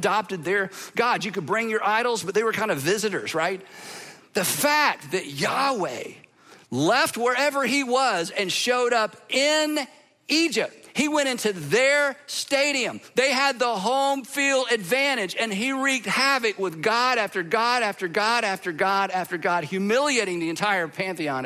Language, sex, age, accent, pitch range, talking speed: English, male, 50-69, American, 175-245 Hz, 160 wpm